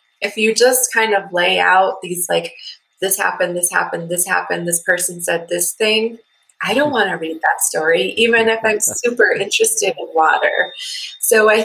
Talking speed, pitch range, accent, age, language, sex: 185 wpm, 175-220 Hz, American, 20-39, English, female